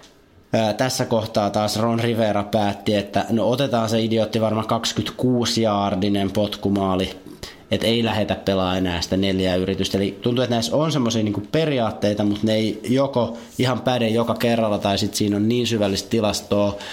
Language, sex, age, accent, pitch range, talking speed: Finnish, male, 30-49, native, 100-115 Hz, 160 wpm